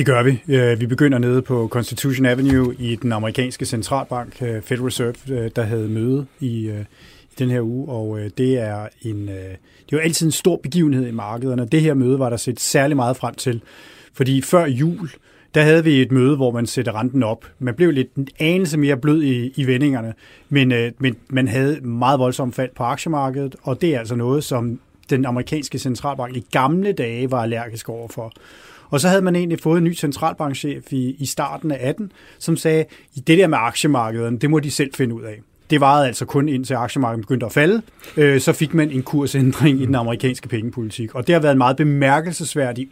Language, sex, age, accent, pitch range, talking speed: Danish, male, 30-49, native, 125-150 Hz, 200 wpm